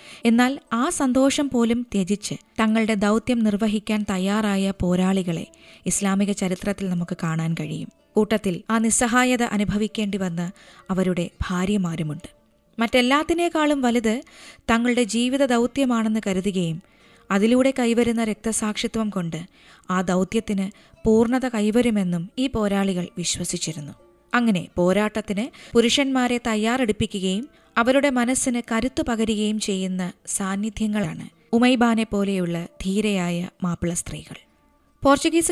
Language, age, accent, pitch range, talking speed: Malayalam, 20-39, native, 190-240 Hz, 95 wpm